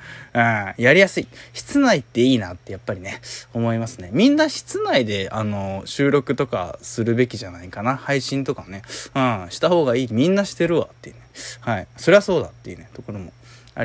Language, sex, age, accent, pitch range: Japanese, male, 20-39, native, 110-145 Hz